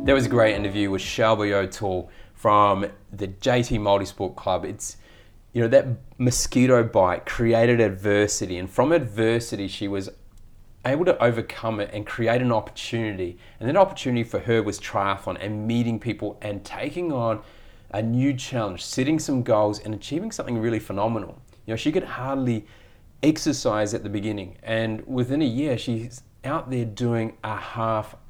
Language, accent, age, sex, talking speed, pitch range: English, Australian, 30-49, male, 165 wpm, 100-125 Hz